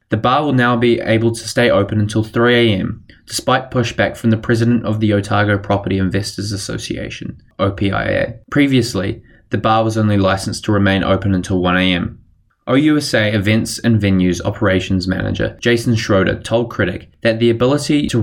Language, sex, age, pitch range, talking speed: English, male, 20-39, 100-115 Hz, 165 wpm